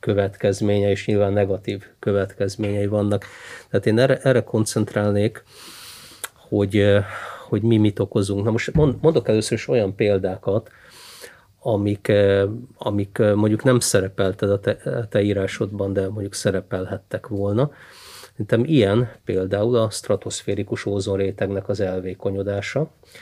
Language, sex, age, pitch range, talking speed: Hungarian, male, 30-49, 100-115 Hz, 110 wpm